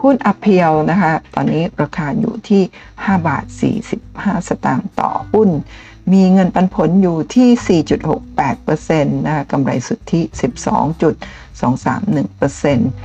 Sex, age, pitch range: female, 60-79, 150-215 Hz